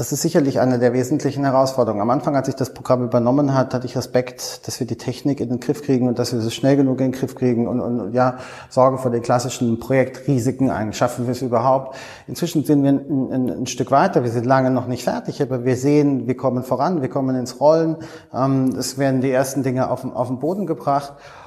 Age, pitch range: 30-49, 125-155 Hz